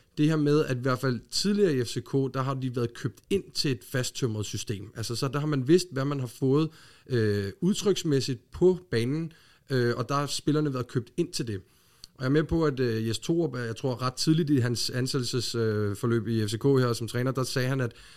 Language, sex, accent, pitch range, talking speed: Danish, male, native, 120-145 Hz, 220 wpm